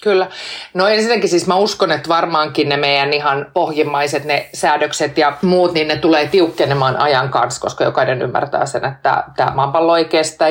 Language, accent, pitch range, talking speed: Finnish, native, 145-175 Hz, 170 wpm